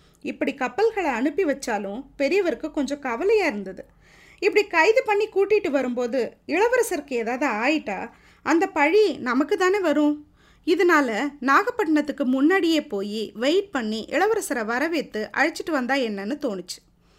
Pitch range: 255-340 Hz